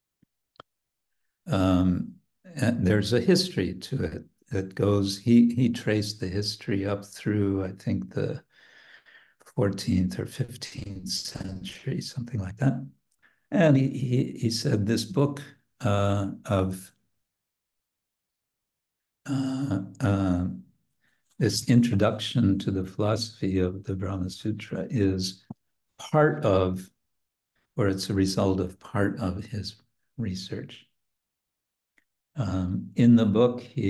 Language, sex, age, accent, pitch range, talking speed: English, male, 60-79, American, 95-120 Hz, 110 wpm